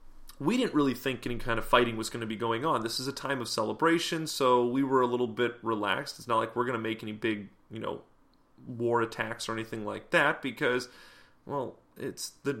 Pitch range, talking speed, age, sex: 115-130 Hz, 230 wpm, 30-49, male